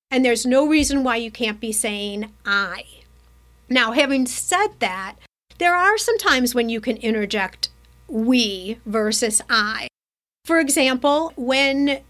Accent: American